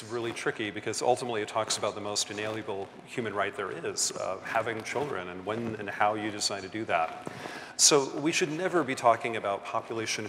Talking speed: 200 wpm